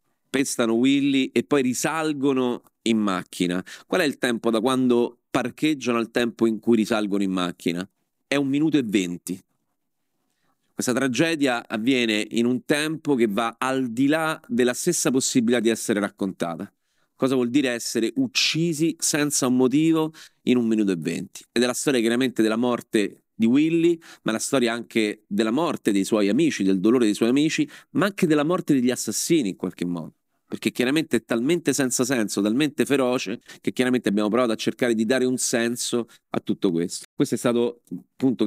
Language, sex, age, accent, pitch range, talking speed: Italian, male, 40-59, native, 110-135 Hz, 180 wpm